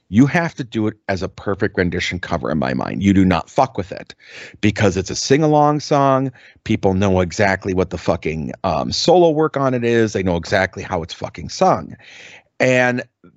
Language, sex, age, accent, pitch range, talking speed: English, male, 30-49, American, 105-140 Hz, 200 wpm